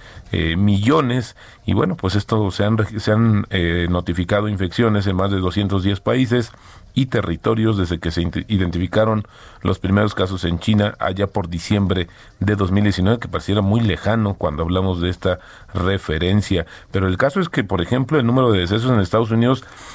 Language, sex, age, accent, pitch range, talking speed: Spanish, male, 40-59, Mexican, 95-120 Hz, 170 wpm